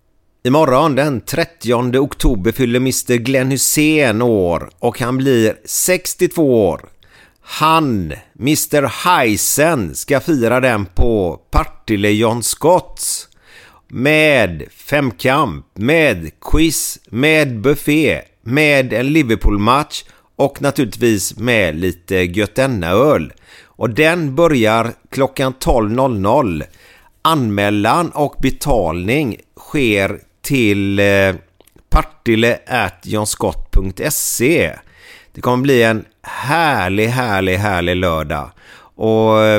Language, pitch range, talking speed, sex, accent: Swedish, 100-135 Hz, 85 wpm, male, native